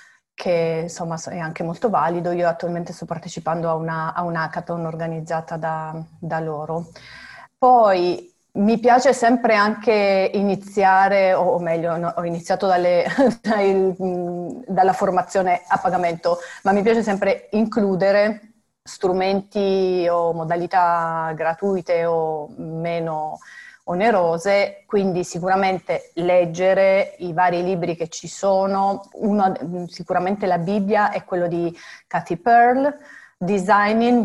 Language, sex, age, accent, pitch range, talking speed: Italian, female, 30-49, native, 170-205 Hz, 110 wpm